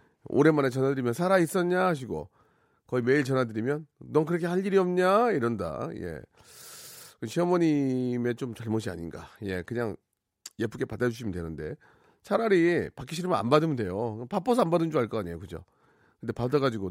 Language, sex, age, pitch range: Korean, male, 40-59, 110-150 Hz